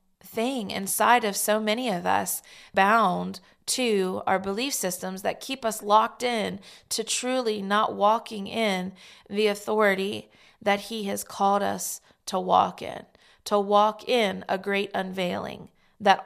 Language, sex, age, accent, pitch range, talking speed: English, female, 20-39, American, 185-210 Hz, 145 wpm